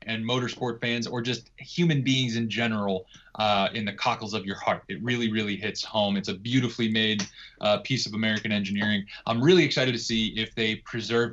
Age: 20-39